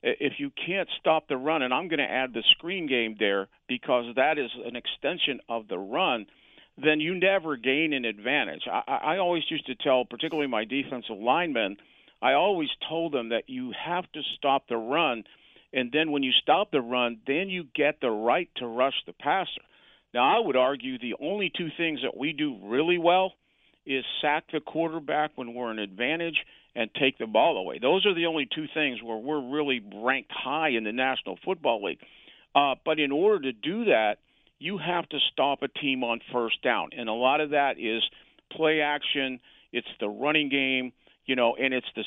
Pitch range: 125-160 Hz